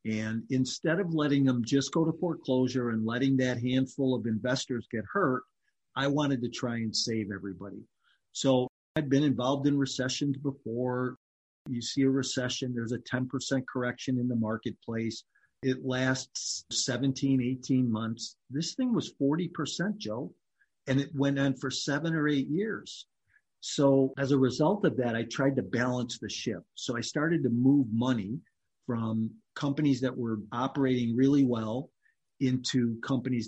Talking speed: 160 wpm